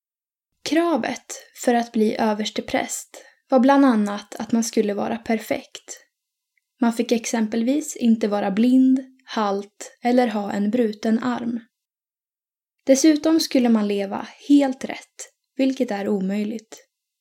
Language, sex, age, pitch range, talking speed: Swedish, female, 10-29, 225-280 Hz, 120 wpm